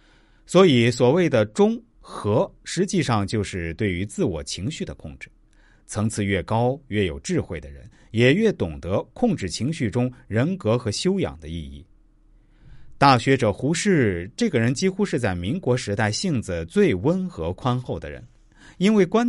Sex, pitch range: male, 90-140 Hz